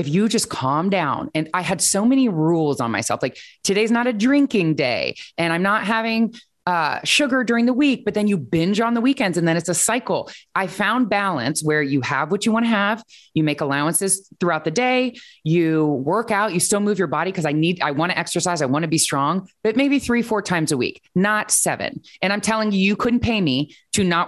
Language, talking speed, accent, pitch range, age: English, 235 wpm, American, 155-215 Hz, 30-49